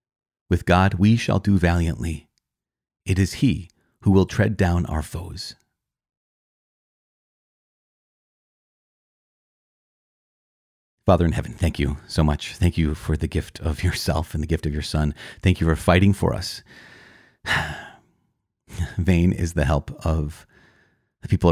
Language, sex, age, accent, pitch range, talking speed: English, male, 30-49, American, 80-95 Hz, 135 wpm